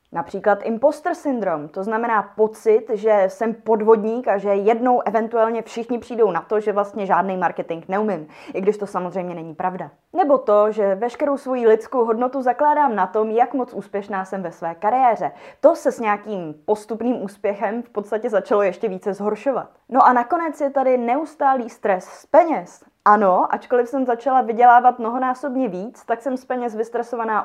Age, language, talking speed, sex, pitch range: 20-39, Czech, 170 wpm, female, 195-255 Hz